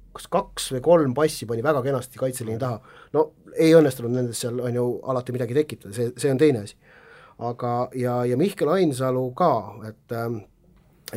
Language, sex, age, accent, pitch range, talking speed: English, male, 30-49, Finnish, 125-145 Hz, 165 wpm